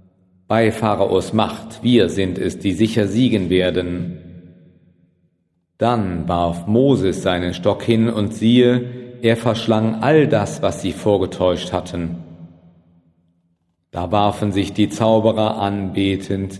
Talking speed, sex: 115 wpm, male